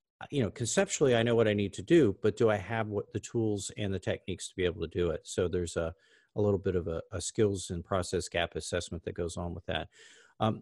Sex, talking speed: male, 260 wpm